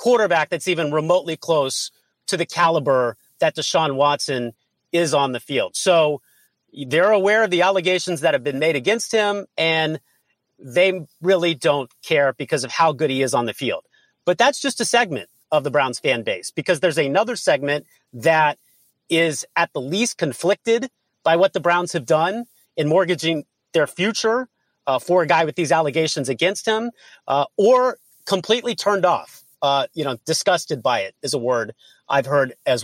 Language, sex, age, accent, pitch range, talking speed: English, male, 40-59, American, 145-195 Hz, 175 wpm